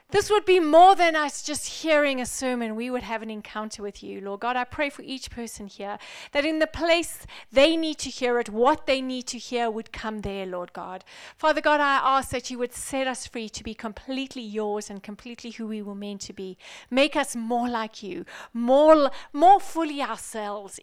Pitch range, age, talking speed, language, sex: 225-300 Hz, 40-59, 215 wpm, English, female